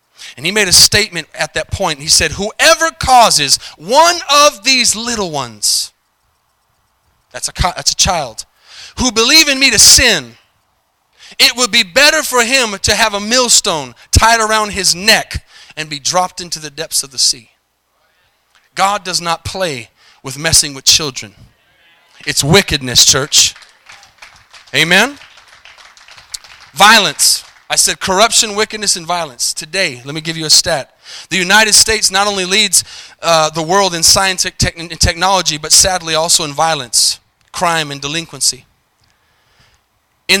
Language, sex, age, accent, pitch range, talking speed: English, male, 30-49, American, 155-215 Hz, 150 wpm